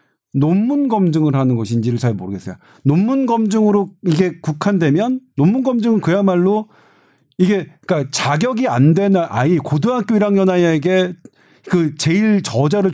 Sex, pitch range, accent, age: male, 140-195 Hz, native, 40-59